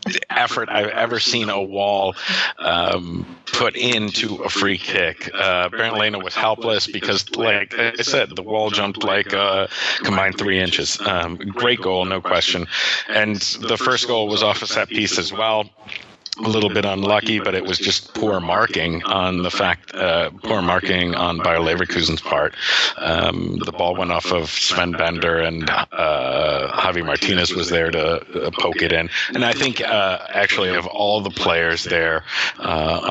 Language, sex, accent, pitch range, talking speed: English, male, American, 90-105 Hz, 175 wpm